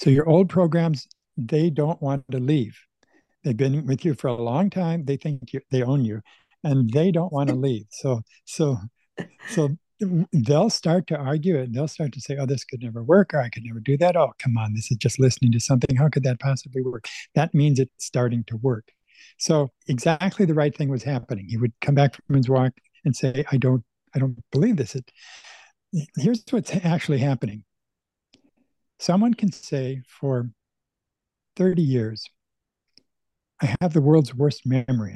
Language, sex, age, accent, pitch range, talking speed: English, male, 60-79, American, 125-165 Hz, 190 wpm